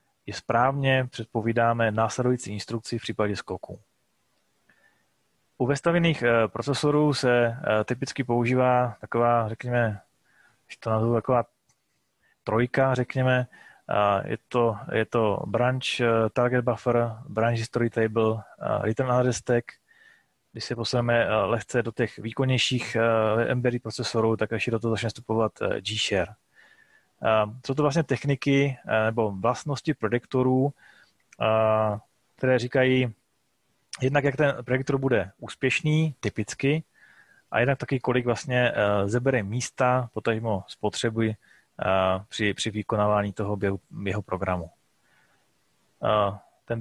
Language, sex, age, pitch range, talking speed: Czech, male, 20-39, 110-130 Hz, 105 wpm